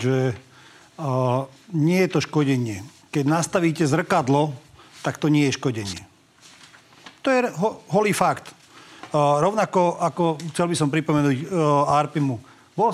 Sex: male